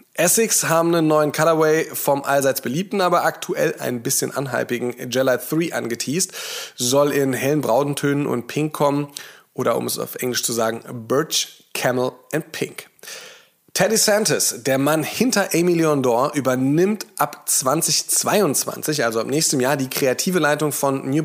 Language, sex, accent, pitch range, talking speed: German, male, German, 125-155 Hz, 150 wpm